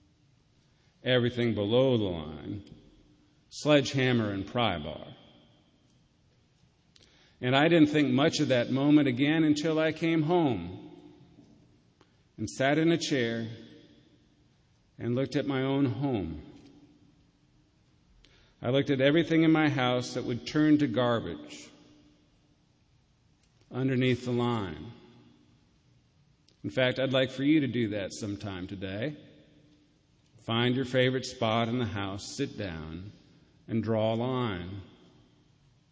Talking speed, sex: 120 wpm, male